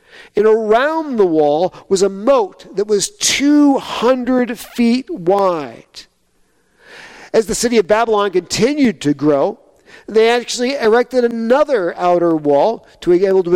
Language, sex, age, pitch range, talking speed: English, male, 50-69, 150-240 Hz, 135 wpm